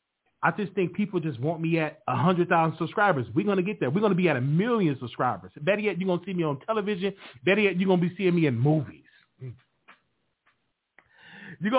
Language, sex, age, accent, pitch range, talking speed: English, male, 30-49, American, 140-195 Hz, 220 wpm